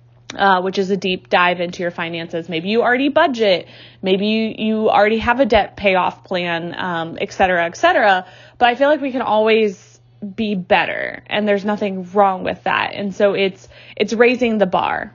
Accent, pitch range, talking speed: American, 180-220 Hz, 195 wpm